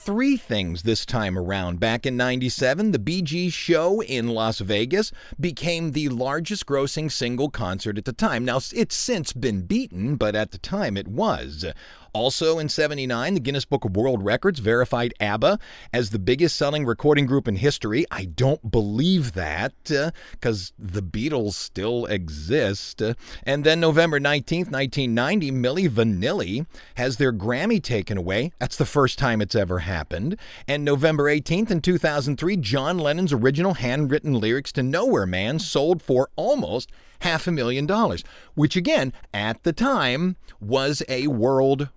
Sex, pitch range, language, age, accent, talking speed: male, 110-160 Hz, English, 40-59, American, 160 wpm